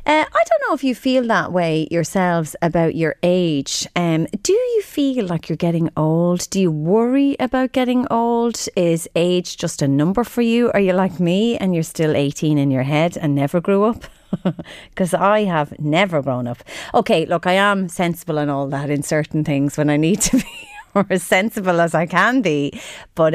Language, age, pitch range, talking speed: English, 30-49, 155-225 Hz, 205 wpm